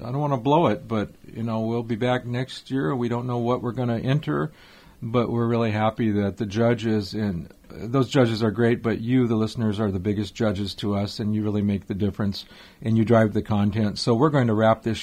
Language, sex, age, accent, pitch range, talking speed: English, male, 50-69, American, 110-135 Hz, 245 wpm